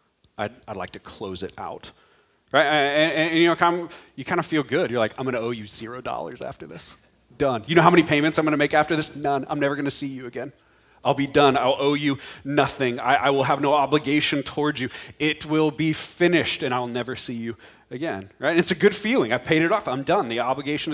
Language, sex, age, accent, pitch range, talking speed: English, male, 30-49, American, 135-175 Hz, 245 wpm